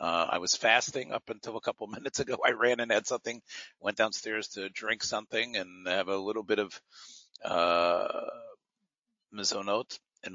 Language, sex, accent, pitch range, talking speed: English, male, American, 90-105 Hz, 170 wpm